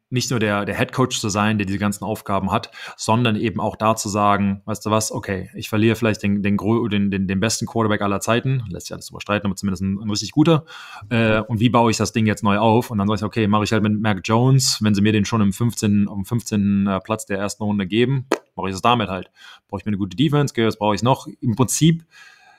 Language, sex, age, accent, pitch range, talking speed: German, male, 20-39, German, 100-120 Hz, 260 wpm